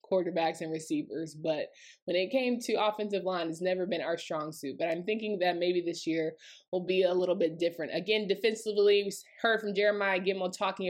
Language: English